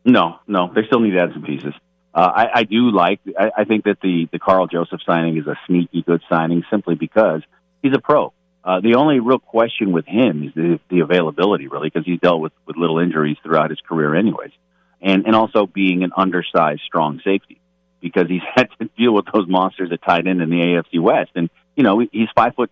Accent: American